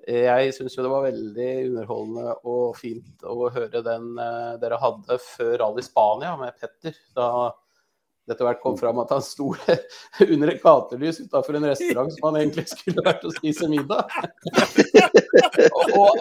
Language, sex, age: English, male, 30-49